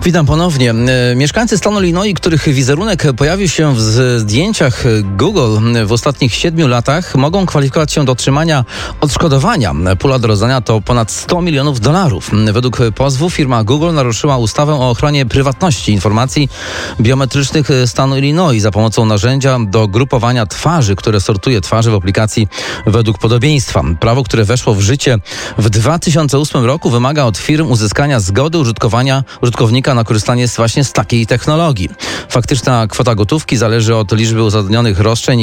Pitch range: 110-135 Hz